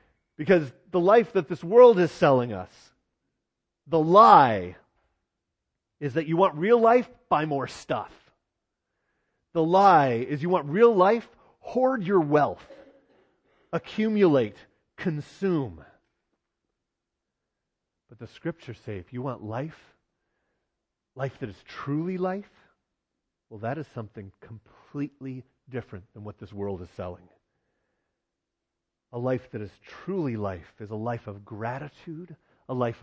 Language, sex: English, male